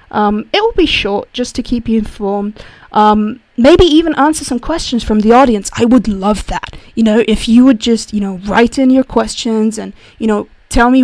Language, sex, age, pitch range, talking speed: English, female, 20-39, 210-260 Hz, 220 wpm